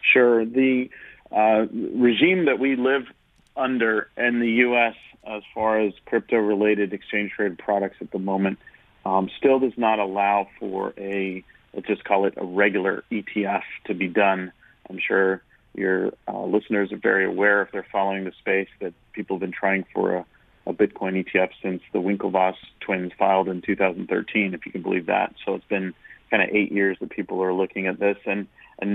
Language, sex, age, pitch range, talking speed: English, male, 40-59, 95-110 Hz, 180 wpm